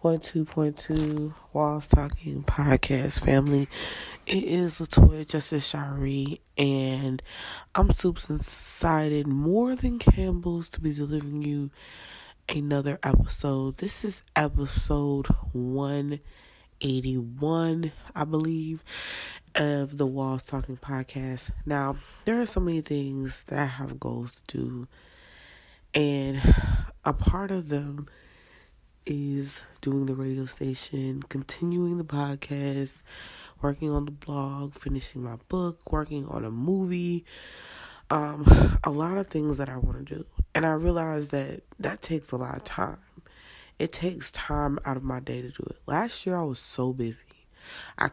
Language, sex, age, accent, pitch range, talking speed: English, female, 20-39, American, 135-155 Hz, 135 wpm